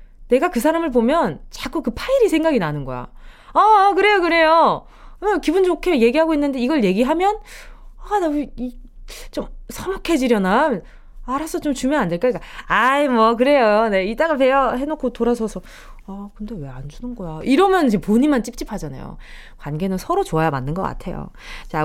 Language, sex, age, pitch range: Korean, female, 20-39, 190-310 Hz